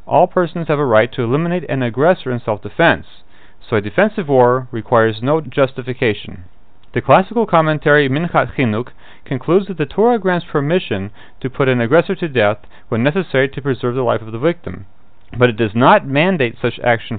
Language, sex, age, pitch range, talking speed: English, male, 40-59, 115-150 Hz, 180 wpm